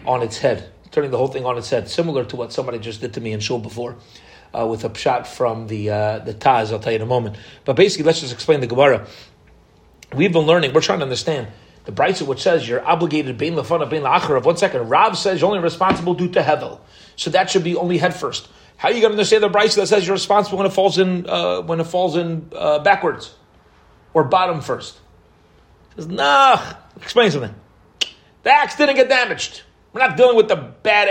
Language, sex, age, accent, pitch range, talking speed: English, male, 30-49, American, 135-205 Hz, 235 wpm